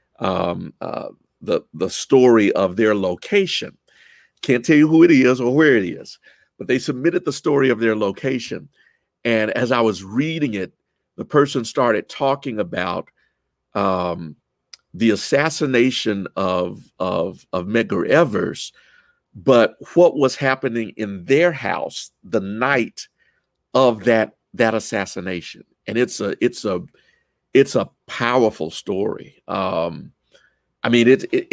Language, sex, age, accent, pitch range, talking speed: English, male, 50-69, American, 105-140 Hz, 135 wpm